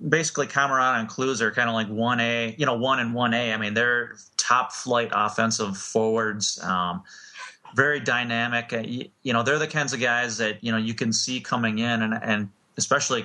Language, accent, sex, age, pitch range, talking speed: English, American, male, 30-49, 110-125 Hz, 200 wpm